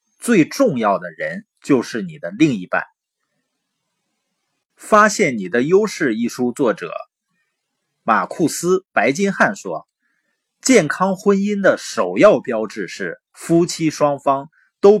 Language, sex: Chinese, male